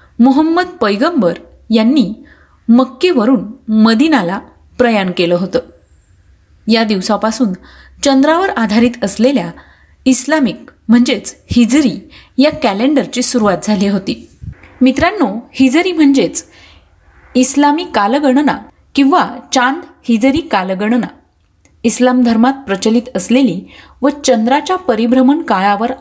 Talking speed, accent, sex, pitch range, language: 90 wpm, native, female, 200-265 Hz, Marathi